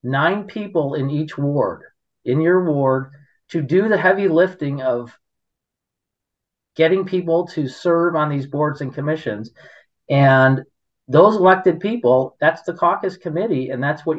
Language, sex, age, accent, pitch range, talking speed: English, male, 40-59, American, 130-165 Hz, 145 wpm